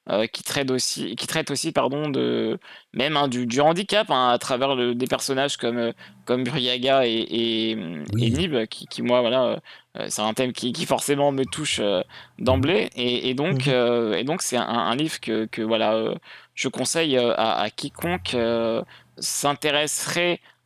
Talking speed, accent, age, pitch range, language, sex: 185 wpm, French, 20-39, 125-165 Hz, French, male